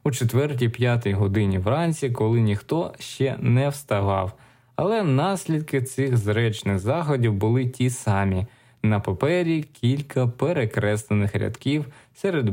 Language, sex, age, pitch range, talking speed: Ukrainian, male, 20-39, 110-140 Hz, 110 wpm